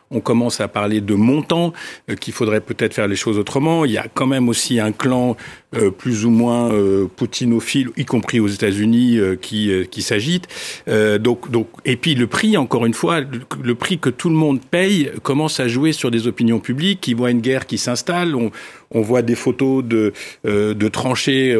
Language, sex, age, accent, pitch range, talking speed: French, male, 50-69, French, 115-145 Hz, 210 wpm